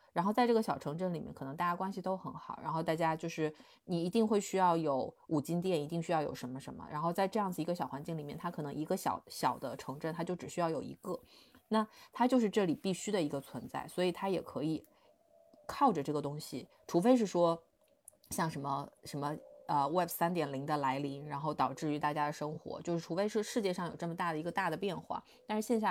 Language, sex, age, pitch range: Chinese, female, 20-39, 150-190 Hz